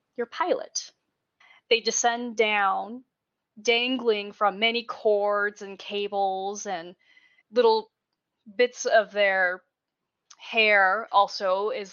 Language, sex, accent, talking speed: English, female, American, 95 wpm